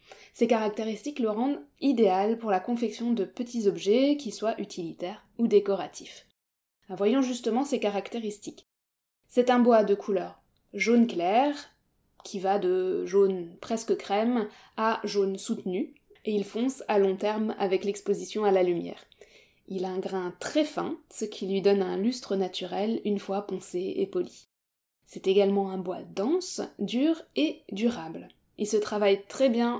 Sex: female